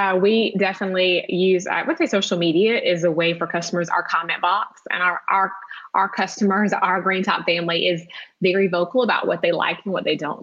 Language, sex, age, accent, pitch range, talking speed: English, female, 20-39, American, 170-195 Hz, 215 wpm